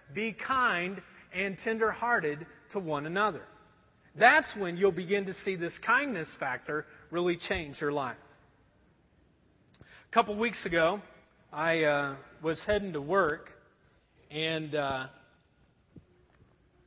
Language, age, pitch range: English, 40-59, 150-200 Hz